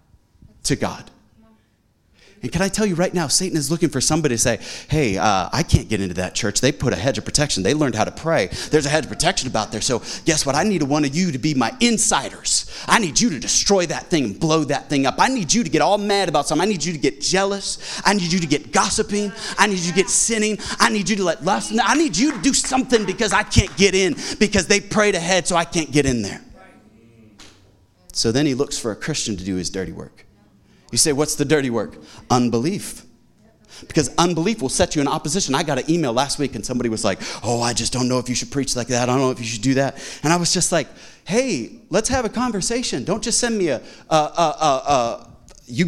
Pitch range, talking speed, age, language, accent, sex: 125-195 Hz, 255 wpm, 30-49, English, American, male